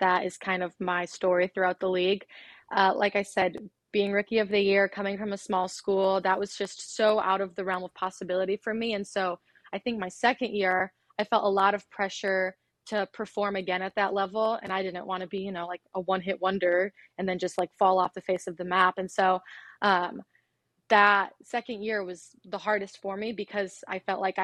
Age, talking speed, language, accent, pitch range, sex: 20-39, 230 wpm, English, American, 185-205 Hz, female